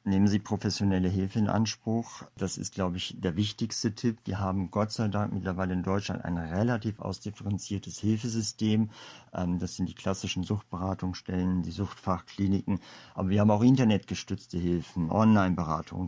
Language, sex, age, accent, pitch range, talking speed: German, male, 50-69, German, 95-120 Hz, 145 wpm